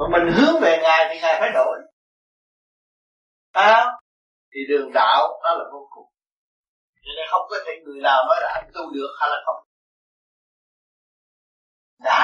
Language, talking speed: Vietnamese, 165 wpm